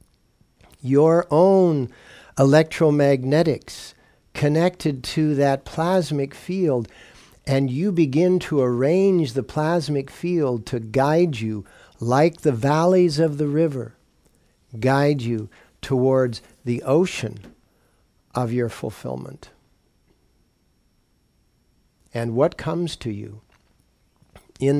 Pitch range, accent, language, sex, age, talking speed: 115-150 Hz, American, English, male, 50-69, 95 wpm